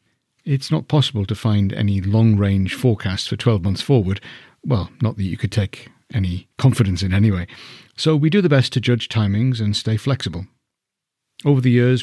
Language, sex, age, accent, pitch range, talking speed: English, male, 50-69, British, 105-130 Hz, 180 wpm